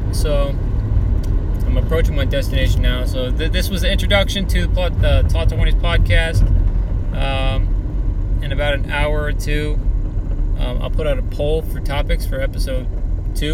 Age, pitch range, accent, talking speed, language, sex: 20-39, 85-130 Hz, American, 165 wpm, English, male